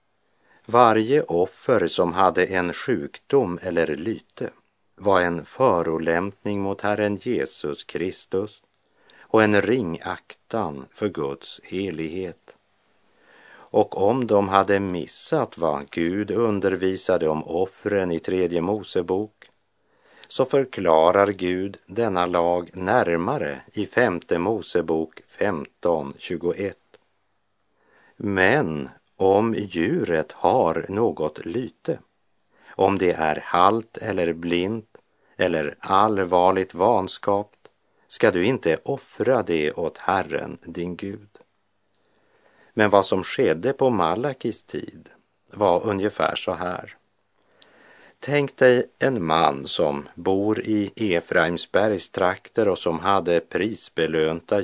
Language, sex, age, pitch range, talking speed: Swedish, male, 50-69, 85-105 Hz, 100 wpm